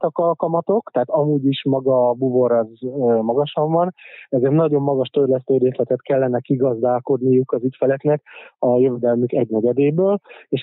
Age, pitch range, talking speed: 20-39, 125-145 Hz, 135 wpm